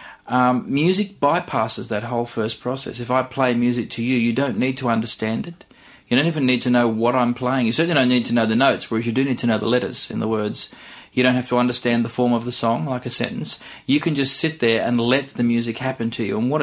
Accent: Australian